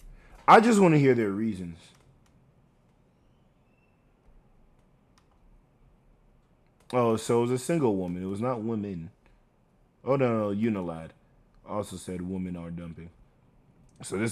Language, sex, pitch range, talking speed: English, male, 95-135 Hz, 120 wpm